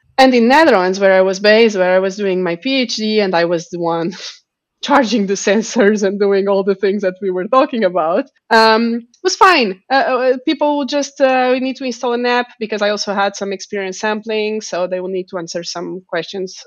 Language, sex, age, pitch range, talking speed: English, female, 20-39, 190-250 Hz, 215 wpm